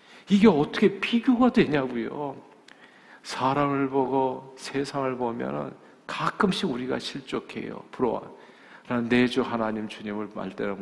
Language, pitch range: Korean, 105-135 Hz